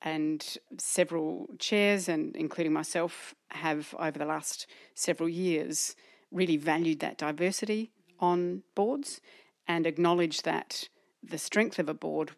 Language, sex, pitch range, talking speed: English, female, 155-205 Hz, 125 wpm